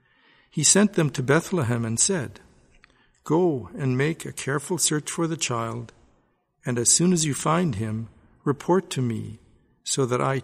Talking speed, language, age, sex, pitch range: 165 wpm, English, 60-79, male, 115-150 Hz